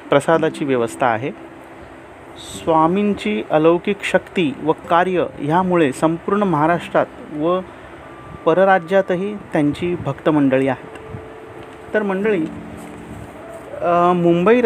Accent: native